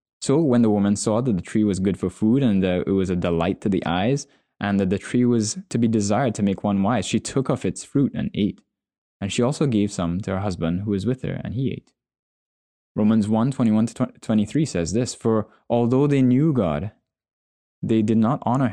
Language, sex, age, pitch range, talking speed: English, male, 10-29, 95-120 Hz, 220 wpm